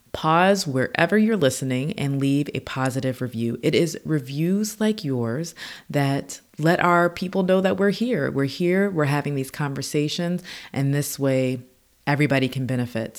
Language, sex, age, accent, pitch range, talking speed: English, female, 20-39, American, 135-180 Hz, 155 wpm